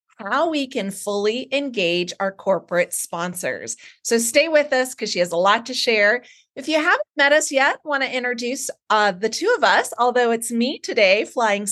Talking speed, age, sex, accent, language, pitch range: 195 wpm, 30-49, female, American, English, 195-270 Hz